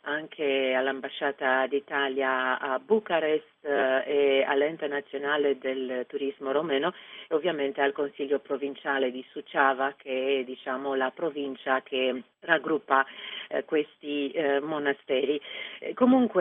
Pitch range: 130-160 Hz